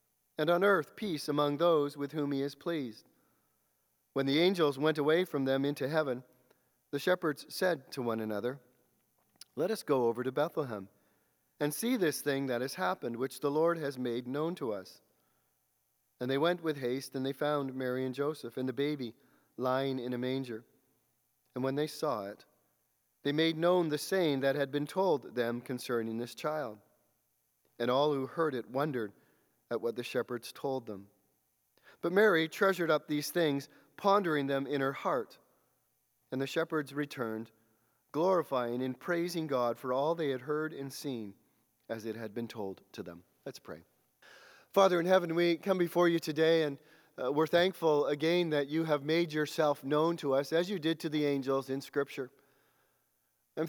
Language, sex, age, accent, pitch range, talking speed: English, male, 40-59, American, 125-160 Hz, 180 wpm